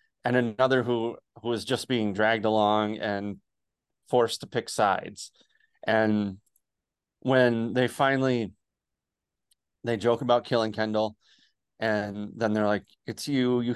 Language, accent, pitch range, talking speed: English, American, 110-135 Hz, 130 wpm